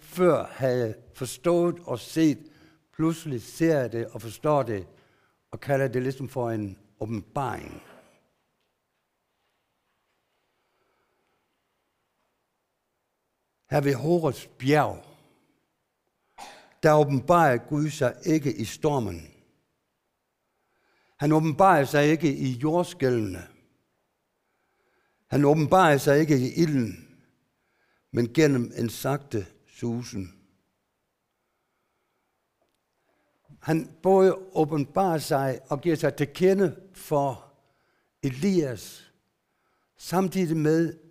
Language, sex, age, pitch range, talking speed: Danish, male, 60-79, 120-155 Hz, 90 wpm